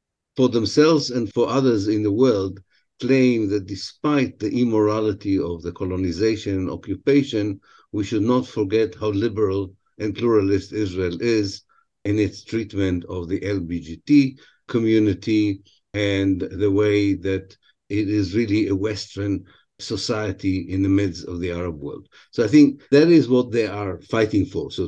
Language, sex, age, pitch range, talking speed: English, male, 50-69, 95-110 Hz, 150 wpm